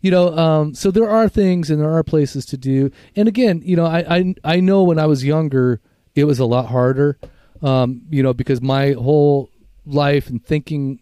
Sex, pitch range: male, 130-155 Hz